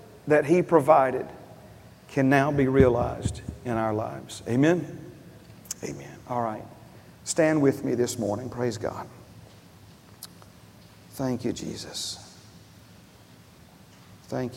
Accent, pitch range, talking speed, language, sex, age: American, 110-130 Hz, 105 wpm, English, male, 40-59